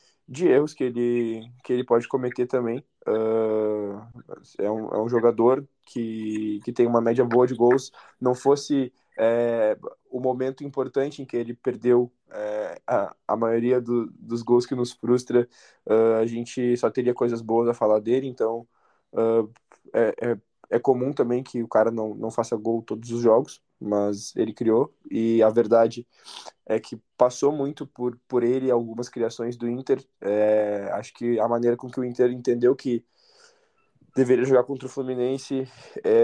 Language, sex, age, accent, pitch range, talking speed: Portuguese, male, 20-39, Brazilian, 115-130 Hz, 170 wpm